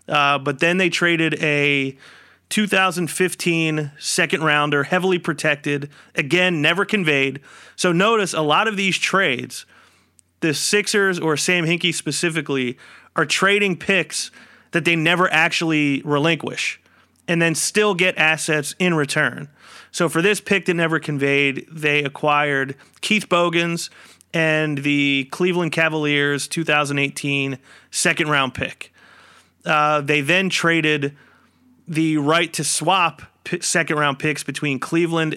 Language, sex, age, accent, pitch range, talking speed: English, male, 30-49, American, 145-175 Hz, 120 wpm